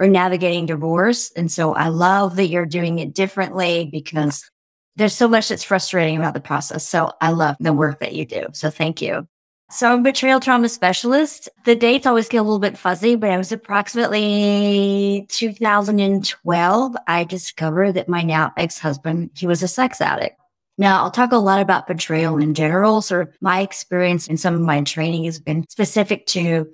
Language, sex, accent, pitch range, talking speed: English, female, American, 165-205 Hz, 190 wpm